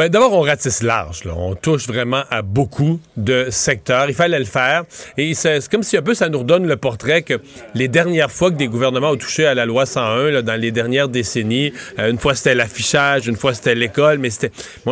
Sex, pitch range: male, 120-160 Hz